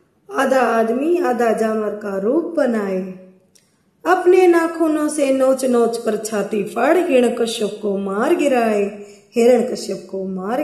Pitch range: 215-310 Hz